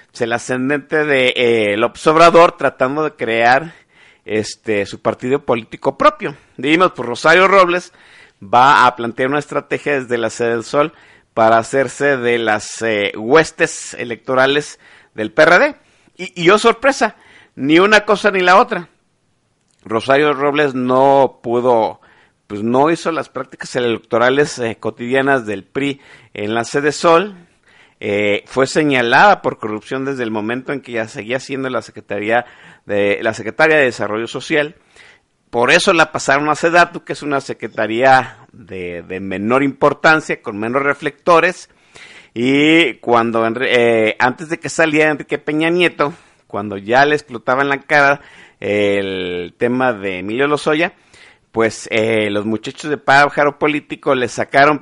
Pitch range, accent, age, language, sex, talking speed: 115-150 Hz, Mexican, 50-69, Spanish, male, 150 wpm